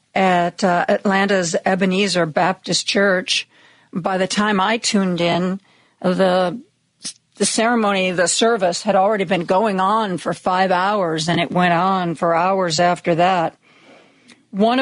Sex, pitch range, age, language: female, 185-240 Hz, 50-69, English